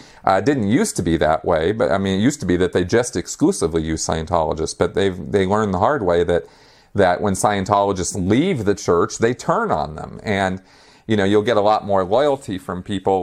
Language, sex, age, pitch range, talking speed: English, male, 40-59, 85-105 Hz, 225 wpm